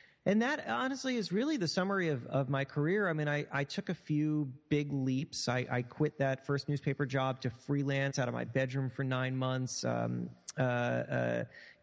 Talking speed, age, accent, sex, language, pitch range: 190 wpm, 30-49, American, male, English, 120-150 Hz